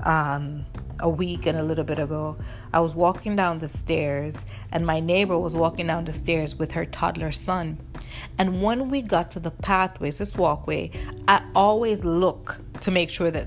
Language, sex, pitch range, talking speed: English, female, 160-220 Hz, 185 wpm